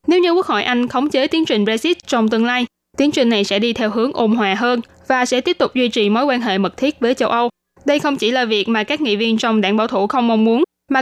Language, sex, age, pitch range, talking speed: Vietnamese, female, 10-29, 215-260 Hz, 295 wpm